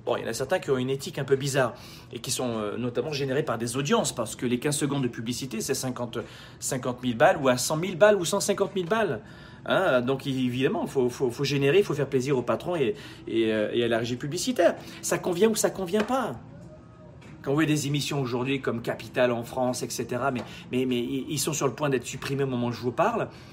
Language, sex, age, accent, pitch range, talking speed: French, male, 40-59, French, 125-200 Hz, 245 wpm